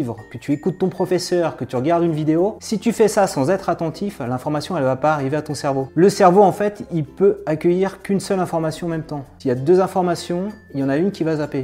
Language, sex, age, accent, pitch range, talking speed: French, male, 30-49, French, 140-175 Hz, 265 wpm